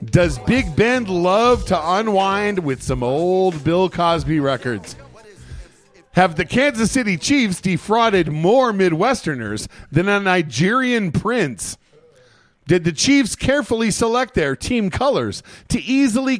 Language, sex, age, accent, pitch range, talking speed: English, male, 40-59, American, 150-220 Hz, 125 wpm